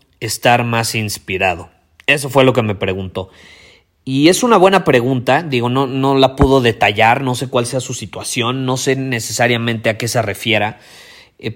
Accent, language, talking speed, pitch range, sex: Mexican, Spanish, 175 wpm, 115-140 Hz, male